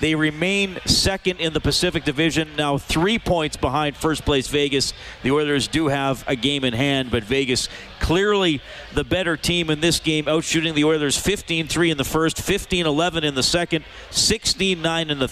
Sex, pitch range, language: male, 135-165 Hz, English